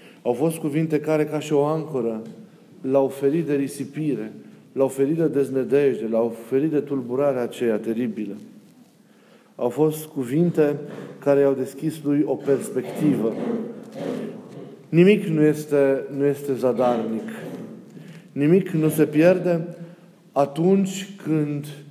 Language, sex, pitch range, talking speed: Romanian, male, 135-175 Hz, 120 wpm